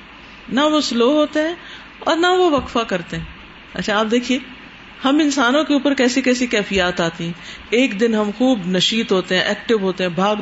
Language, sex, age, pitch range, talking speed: Urdu, female, 50-69, 185-260 Hz, 195 wpm